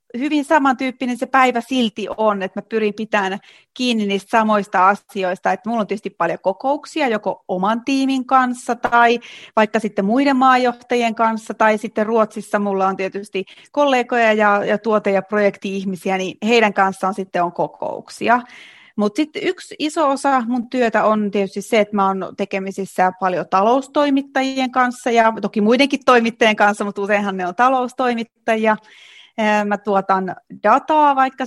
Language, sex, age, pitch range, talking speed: Finnish, female, 30-49, 200-250 Hz, 150 wpm